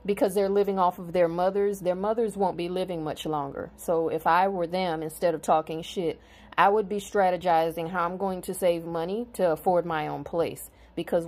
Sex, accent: female, American